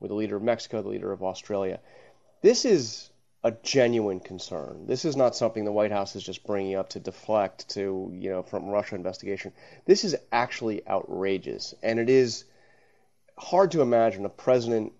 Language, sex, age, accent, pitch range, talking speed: English, male, 30-49, American, 105-120 Hz, 180 wpm